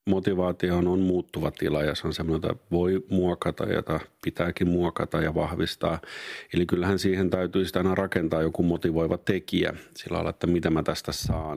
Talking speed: 165 wpm